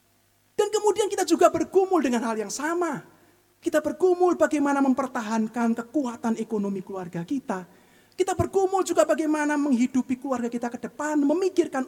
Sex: male